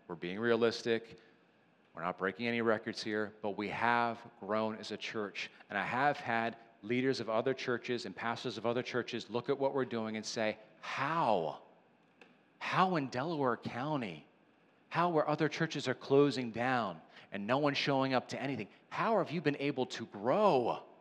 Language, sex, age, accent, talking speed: English, male, 40-59, American, 175 wpm